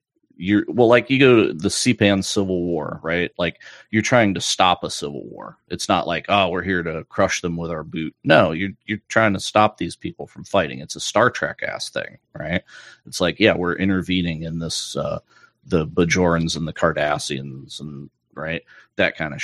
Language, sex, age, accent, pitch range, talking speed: English, male, 30-49, American, 85-110 Hz, 205 wpm